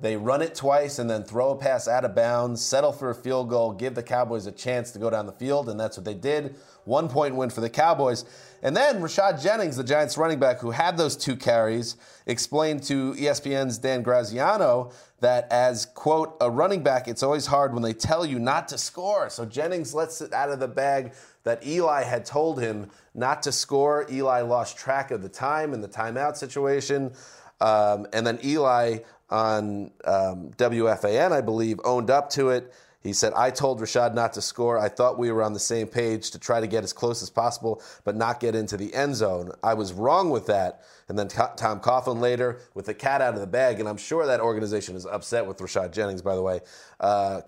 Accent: American